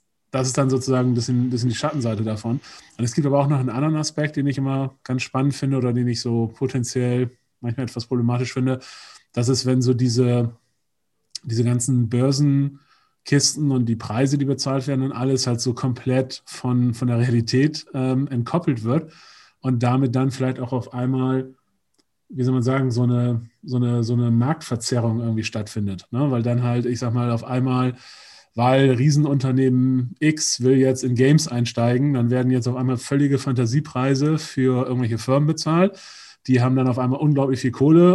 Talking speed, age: 180 wpm, 30-49